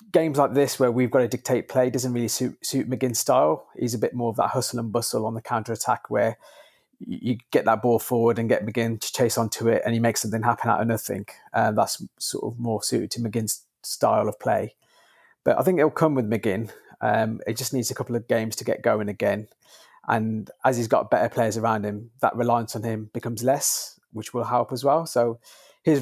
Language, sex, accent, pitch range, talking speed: English, male, British, 115-125 Hz, 230 wpm